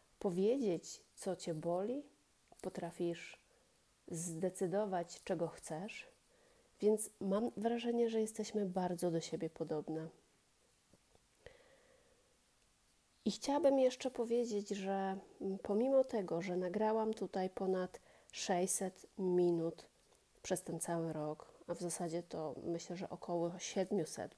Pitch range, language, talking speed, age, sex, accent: 170-220 Hz, Polish, 105 wpm, 30-49, female, native